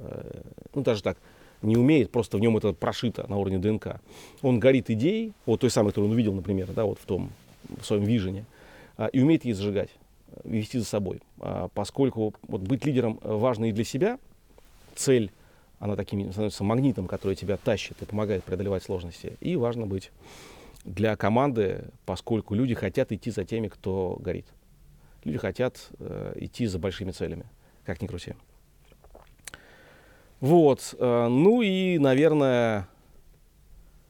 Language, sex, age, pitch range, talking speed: Russian, male, 40-59, 100-125 Hz, 150 wpm